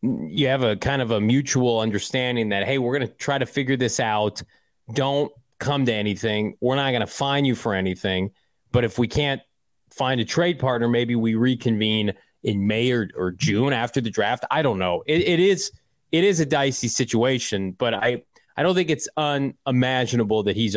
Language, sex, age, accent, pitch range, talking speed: English, male, 30-49, American, 110-135 Hz, 200 wpm